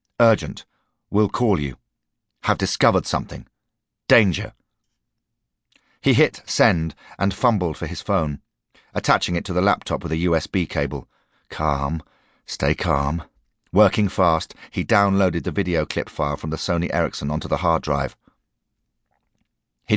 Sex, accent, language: male, British, English